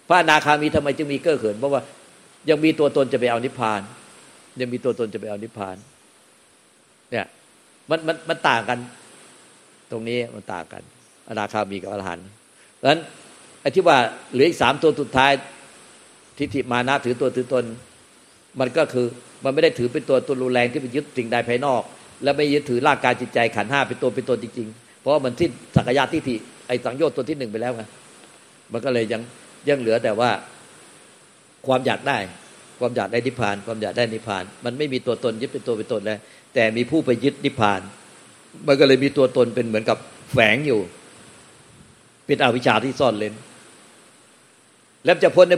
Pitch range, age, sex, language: 115-145 Hz, 60-79, male, Thai